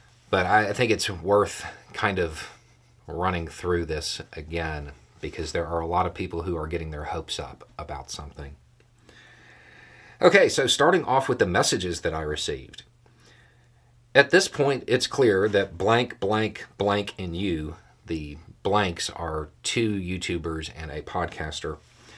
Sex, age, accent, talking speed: male, 40-59, American, 150 wpm